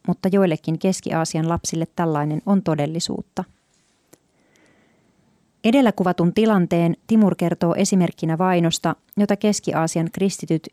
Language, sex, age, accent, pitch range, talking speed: Finnish, female, 30-49, native, 160-190 Hz, 95 wpm